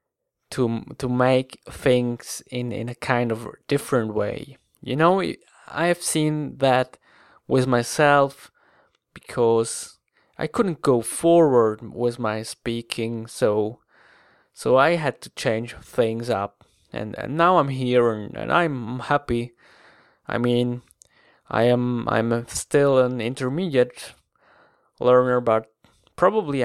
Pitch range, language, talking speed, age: 115-130 Hz, English, 125 wpm, 20-39